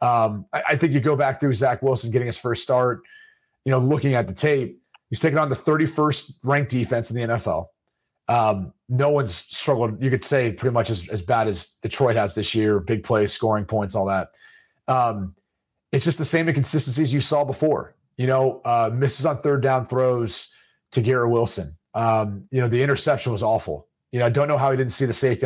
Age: 30-49